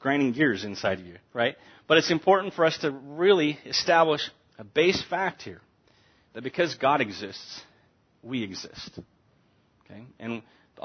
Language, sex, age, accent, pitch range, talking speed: English, male, 40-59, American, 120-160 Hz, 150 wpm